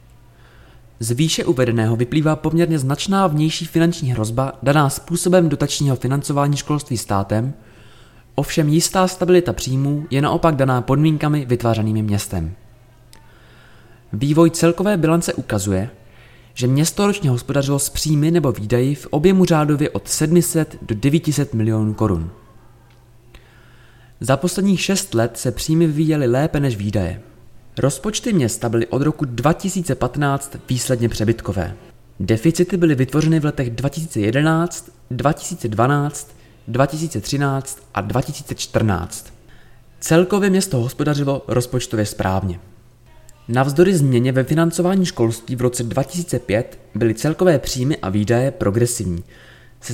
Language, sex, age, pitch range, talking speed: Czech, male, 20-39, 115-155 Hz, 115 wpm